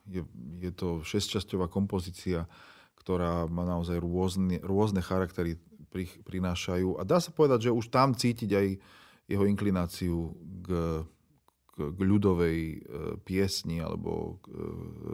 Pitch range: 85-95 Hz